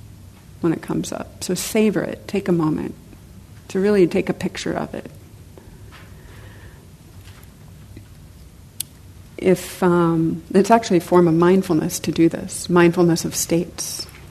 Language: English